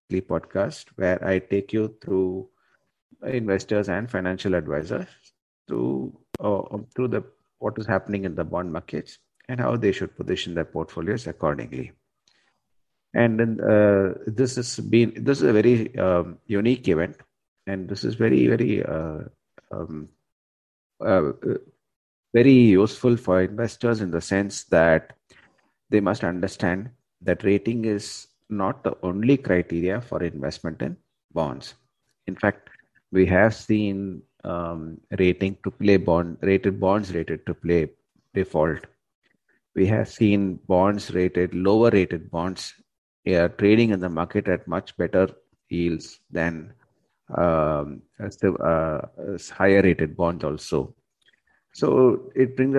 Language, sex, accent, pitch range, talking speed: English, male, Indian, 85-105 Hz, 135 wpm